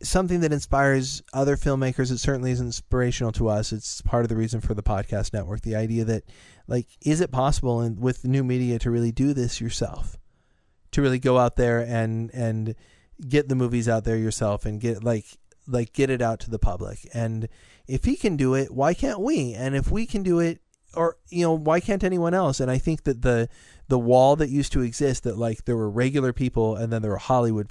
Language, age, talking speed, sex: English, 30-49, 220 wpm, male